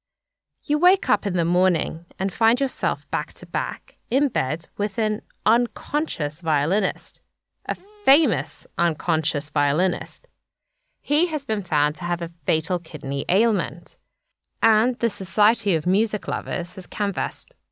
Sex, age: female, 10-29